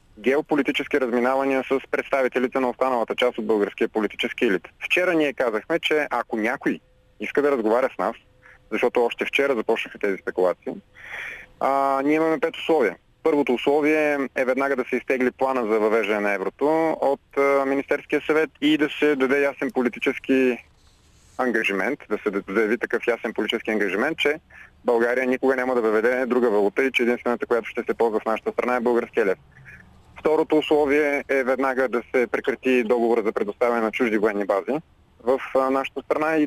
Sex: male